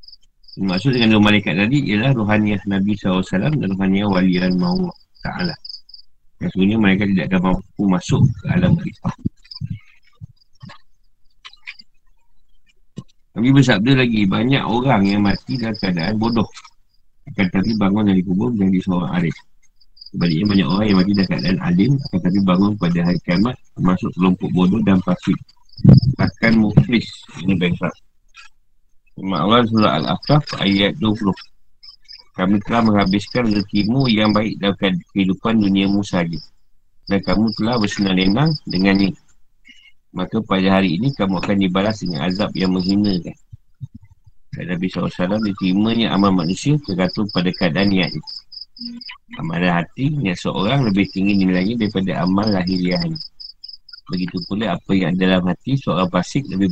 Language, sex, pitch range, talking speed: Malay, male, 95-110 Hz, 135 wpm